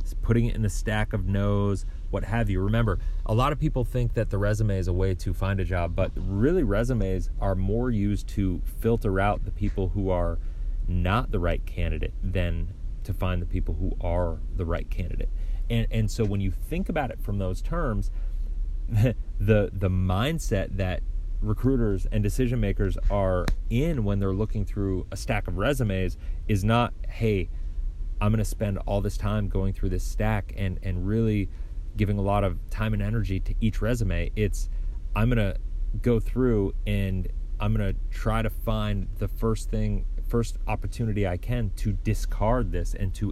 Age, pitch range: 30-49, 90-110 Hz